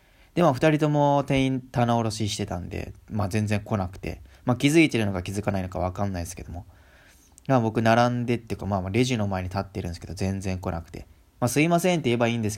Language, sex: Japanese, male